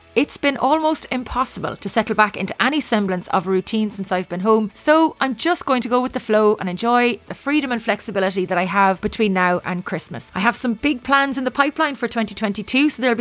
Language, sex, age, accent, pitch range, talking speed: English, female, 30-49, Irish, 190-250 Hz, 230 wpm